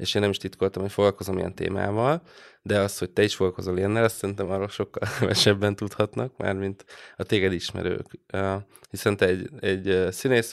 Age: 20-39